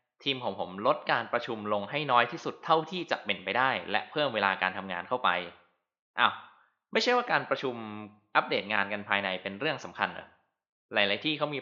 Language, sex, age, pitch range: Thai, male, 20-39, 100-130 Hz